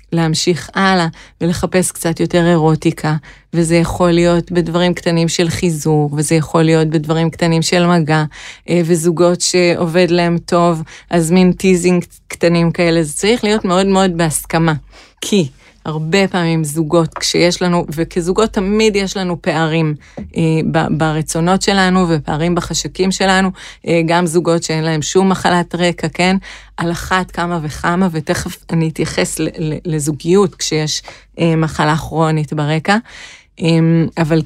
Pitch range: 165-185 Hz